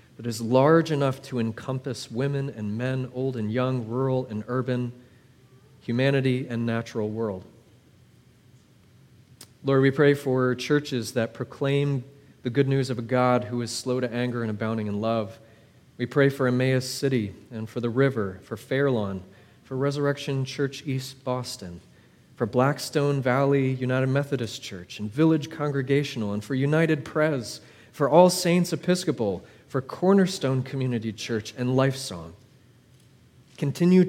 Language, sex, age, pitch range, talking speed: English, male, 30-49, 120-140 Hz, 145 wpm